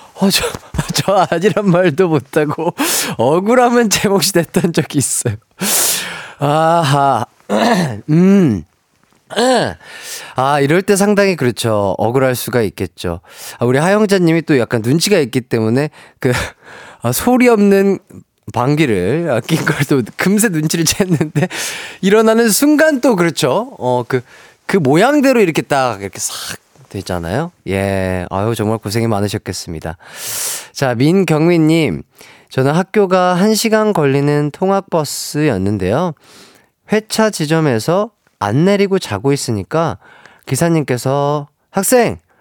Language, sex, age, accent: Korean, male, 30-49, native